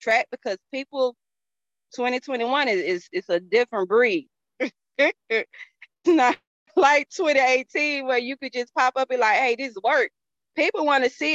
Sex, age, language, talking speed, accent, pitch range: female, 20-39, English, 145 wpm, American, 210-300 Hz